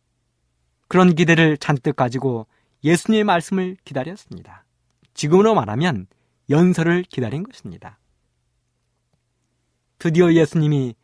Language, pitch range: Korean, 120-175 Hz